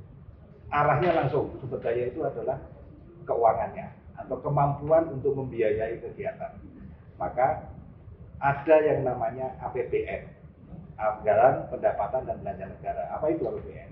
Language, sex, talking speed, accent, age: Indonesian, male, 110 wpm, native, 40-59